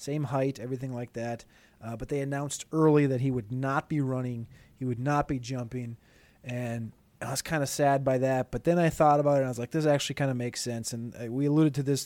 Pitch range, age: 130-165 Hz, 30-49